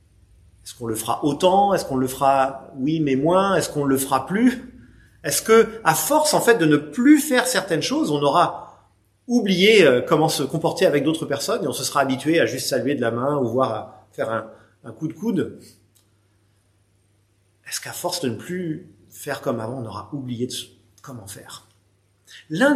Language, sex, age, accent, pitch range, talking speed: French, male, 40-59, French, 110-180 Hz, 195 wpm